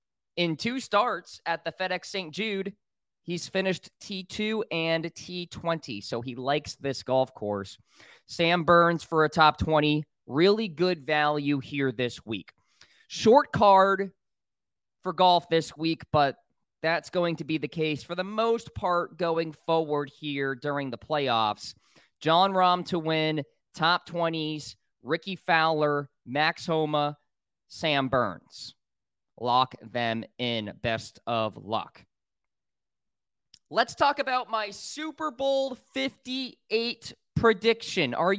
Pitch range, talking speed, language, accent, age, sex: 150-210 Hz, 125 wpm, English, American, 20-39, male